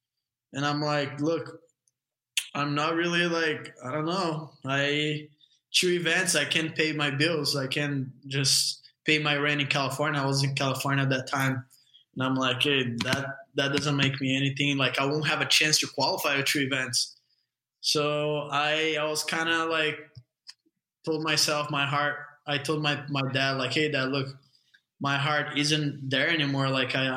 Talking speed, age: 180 wpm, 20-39